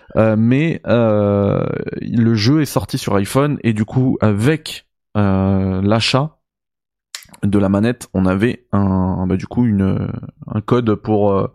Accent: French